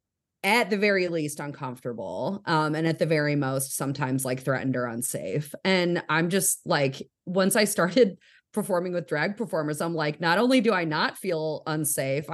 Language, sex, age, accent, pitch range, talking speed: English, female, 30-49, American, 155-190 Hz, 175 wpm